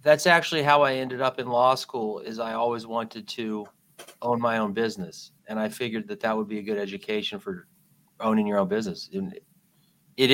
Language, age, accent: English, 30-49, American